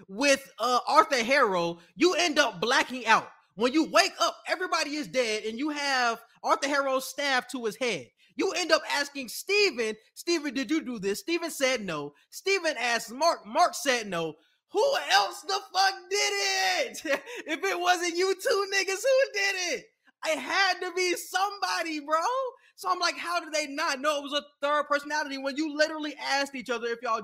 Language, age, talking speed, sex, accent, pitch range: English, 20-39, 190 wpm, male, American, 265-355 Hz